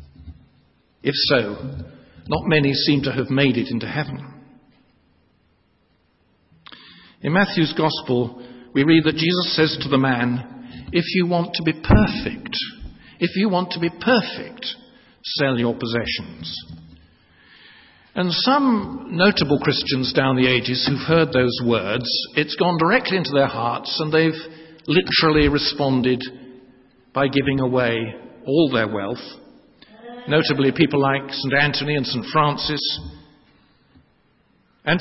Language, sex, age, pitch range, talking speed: English, male, 50-69, 125-165 Hz, 125 wpm